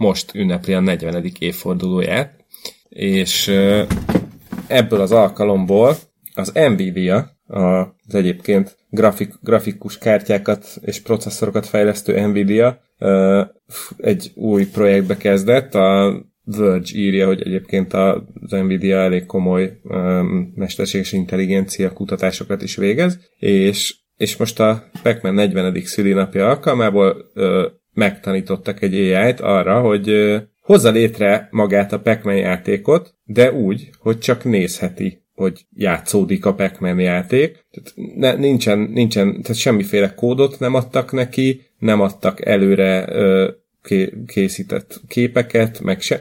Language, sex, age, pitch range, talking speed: Hungarian, male, 30-49, 95-110 Hz, 110 wpm